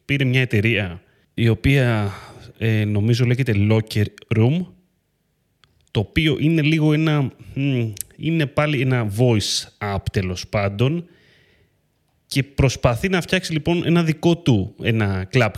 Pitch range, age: 110-150 Hz, 30-49